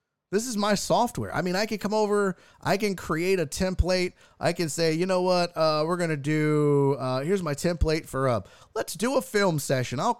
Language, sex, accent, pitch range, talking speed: English, male, American, 125-190 Hz, 220 wpm